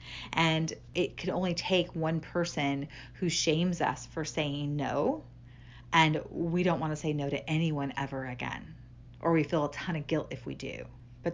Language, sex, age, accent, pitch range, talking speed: English, female, 40-59, American, 140-180 Hz, 185 wpm